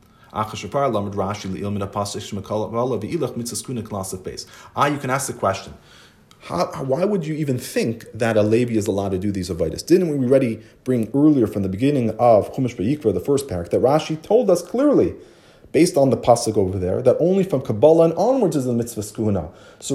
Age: 30-49